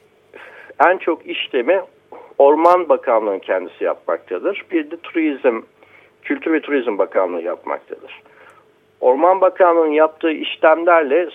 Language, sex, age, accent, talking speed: Turkish, male, 60-79, native, 100 wpm